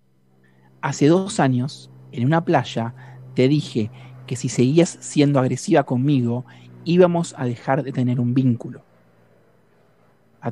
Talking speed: 125 wpm